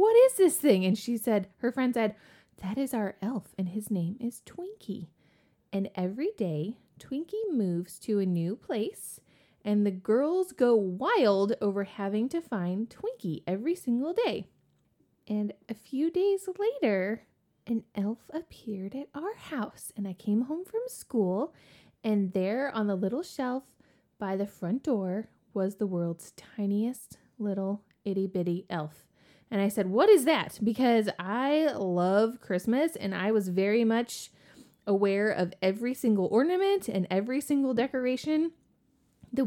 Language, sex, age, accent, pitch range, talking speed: English, female, 20-39, American, 190-275 Hz, 155 wpm